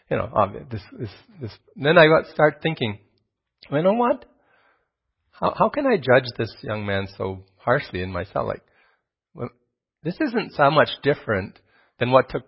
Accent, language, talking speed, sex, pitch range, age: American, English, 145 wpm, male, 105-135 Hz, 40-59